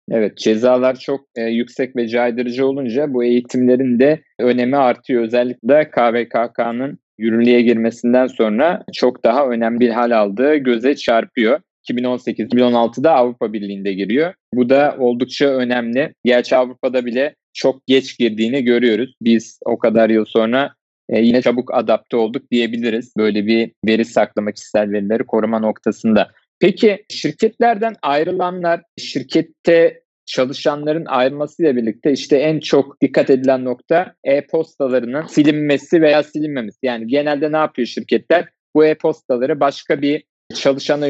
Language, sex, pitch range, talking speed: Turkish, male, 120-155 Hz, 125 wpm